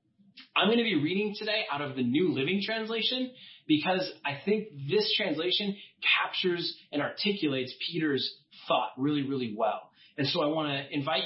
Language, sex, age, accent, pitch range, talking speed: English, male, 30-49, American, 140-210 Hz, 165 wpm